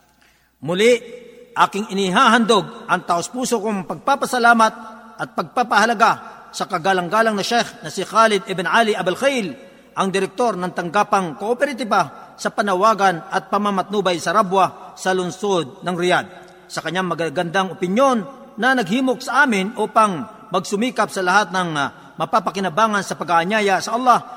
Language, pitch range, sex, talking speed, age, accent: Filipino, 185-230 Hz, male, 135 wpm, 50-69, native